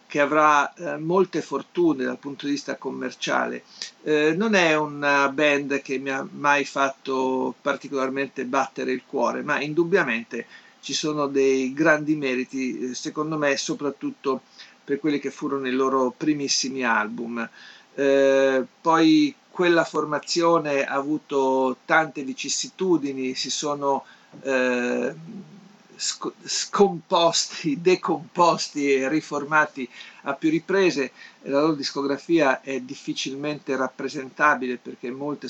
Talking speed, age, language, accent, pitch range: 115 wpm, 50-69, Italian, native, 130-155 Hz